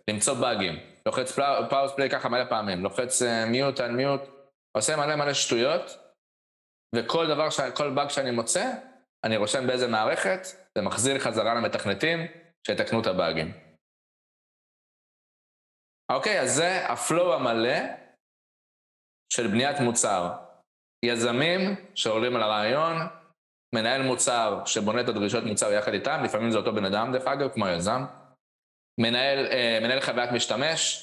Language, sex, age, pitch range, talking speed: Hebrew, male, 20-39, 110-165 Hz, 125 wpm